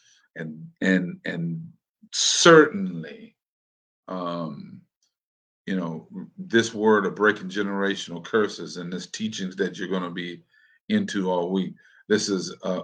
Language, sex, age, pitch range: English, male, 50-69, 95-140 Hz